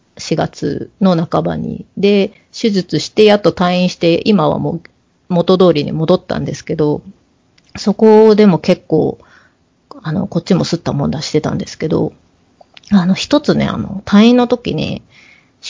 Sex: female